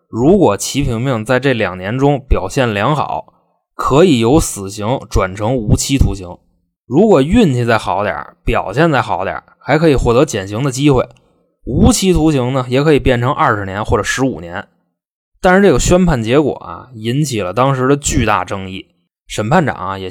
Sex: male